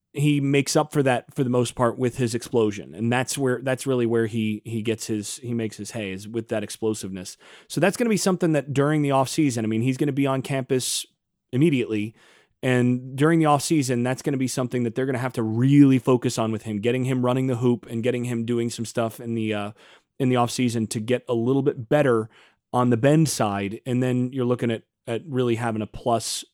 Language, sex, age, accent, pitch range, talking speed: English, male, 30-49, American, 110-135 Hz, 245 wpm